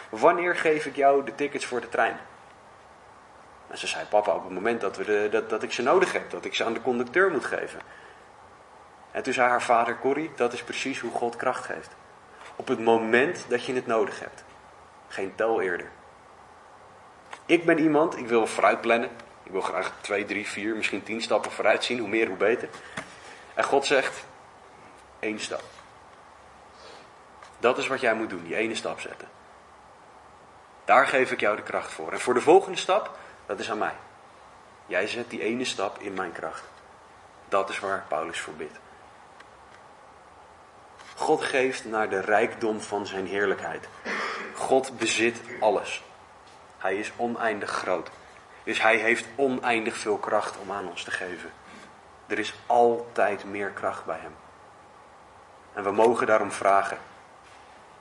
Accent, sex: Dutch, male